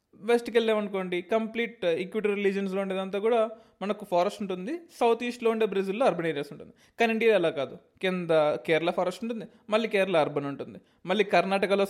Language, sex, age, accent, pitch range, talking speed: Telugu, male, 20-39, native, 175-225 Hz, 155 wpm